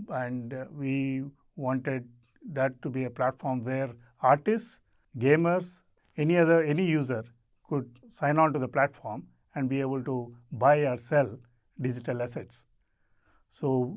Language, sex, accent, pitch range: English, male, Indian, 125-150 Hz